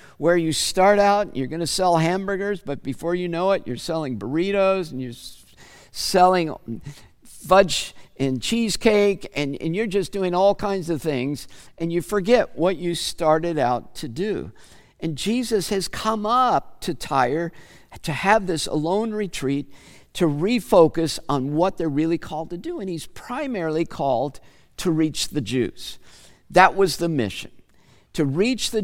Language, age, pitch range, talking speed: English, 50-69, 140-180 Hz, 160 wpm